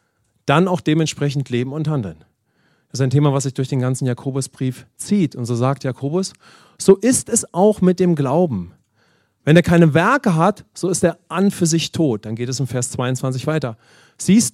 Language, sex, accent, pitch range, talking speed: English, male, German, 135-185 Hz, 200 wpm